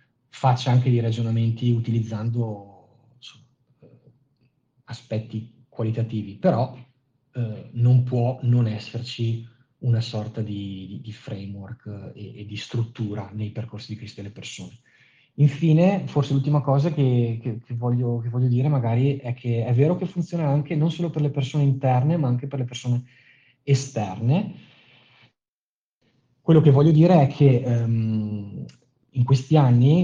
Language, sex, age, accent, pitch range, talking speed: Italian, male, 30-49, native, 110-135 Hz, 140 wpm